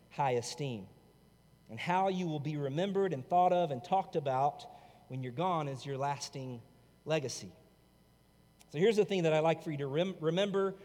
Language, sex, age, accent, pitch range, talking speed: English, male, 40-59, American, 145-195 Hz, 185 wpm